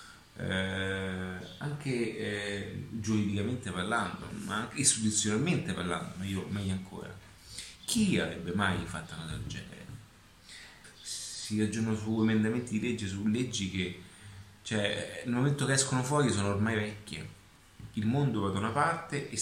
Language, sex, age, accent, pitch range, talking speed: Italian, male, 30-49, native, 95-115 Hz, 135 wpm